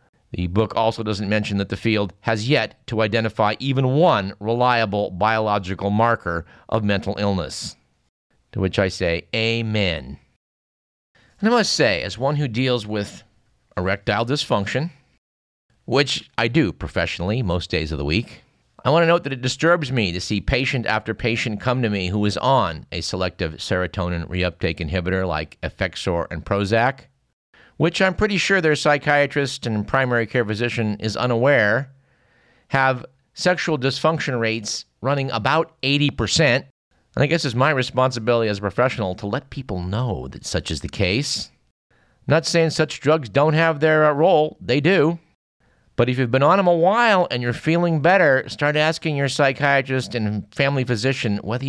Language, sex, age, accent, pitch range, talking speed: English, male, 50-69, American, 105-140 Hz, 165 wpm